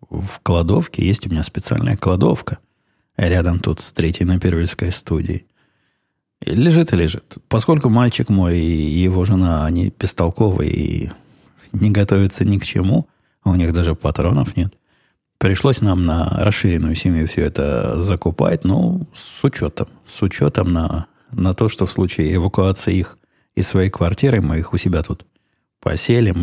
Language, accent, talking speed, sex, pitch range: Russian, native, 150 wpm, male, 85-110 Hz